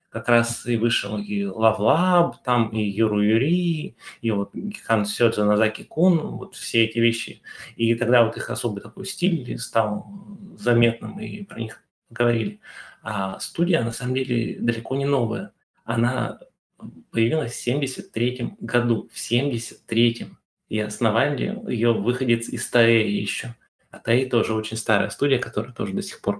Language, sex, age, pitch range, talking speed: Russian, male, 20-39, 110-125 Hz, 155 wpm